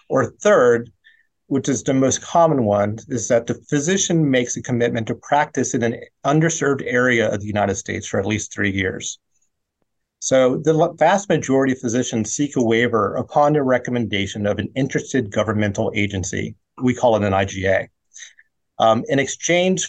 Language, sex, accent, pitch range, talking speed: English, male, American, 115-155 Hz, 165 wpm